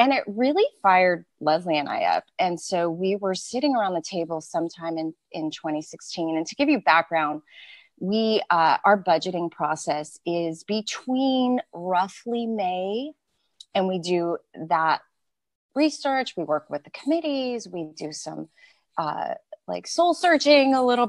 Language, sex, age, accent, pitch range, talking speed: English, female, 30-49, American, 160-220 Hz, 150 wpm